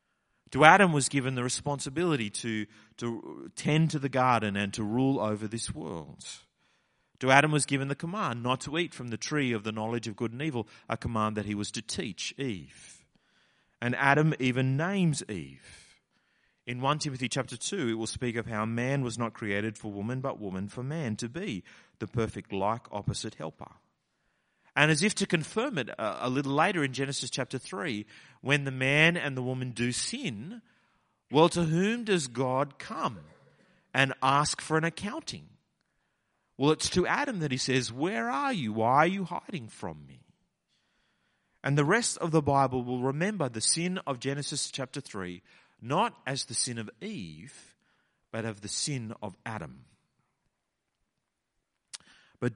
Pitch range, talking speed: 115-155 Hz, 175 wpm